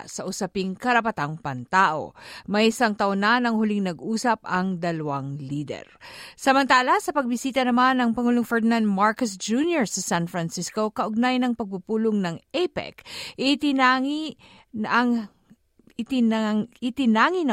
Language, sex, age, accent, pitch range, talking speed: Filipino, female, 50-69, native, 185-255 Hz, 125 wpm